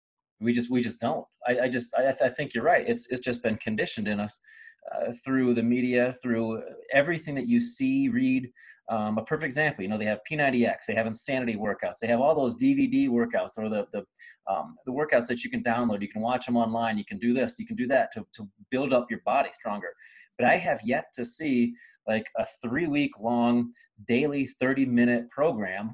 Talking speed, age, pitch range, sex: 215 wpm, 30-49, 120-140 Hz, male